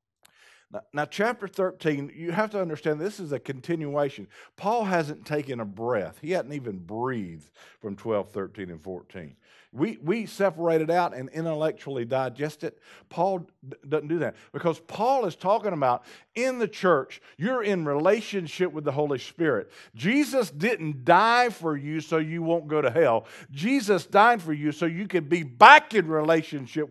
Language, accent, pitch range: English, American, 150-230 Hz